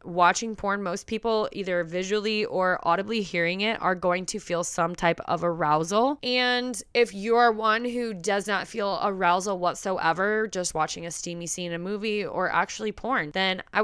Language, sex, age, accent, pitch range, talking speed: English, female, 20-39, American, 175-225 Hz, 180 wpm